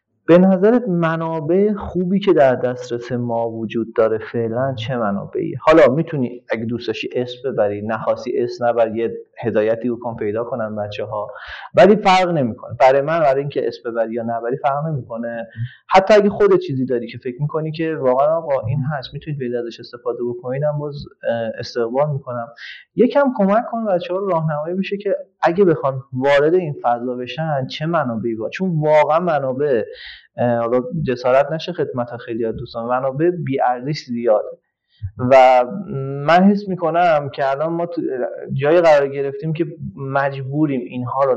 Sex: male